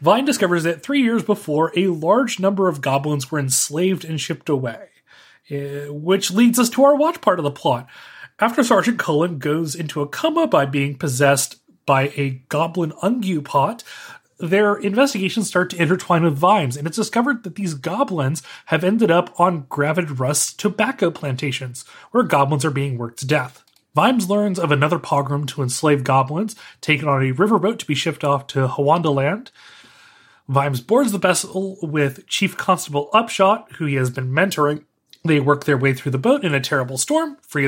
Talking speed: 180 wpm